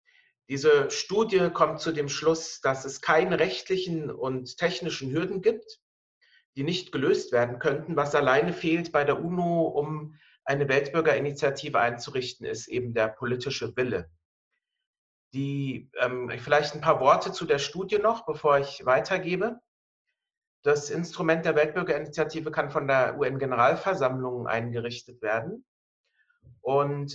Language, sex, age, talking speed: German, male, 40-59, 125 wpm